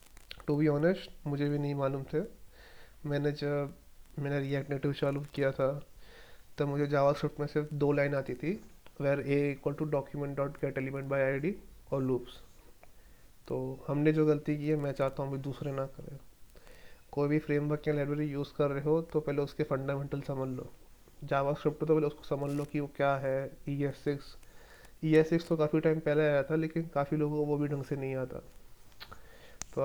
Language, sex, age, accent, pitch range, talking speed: Hindi, male, 30-49, native, 140-155 Hz, 190 wpm